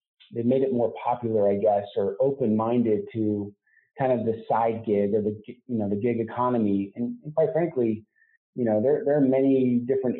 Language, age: English, 30-49